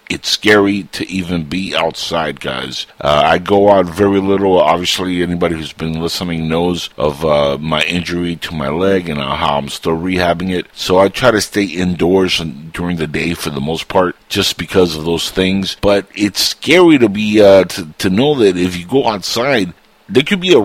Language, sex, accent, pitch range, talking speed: English, male, American, 85-110 Hz, 190 wpm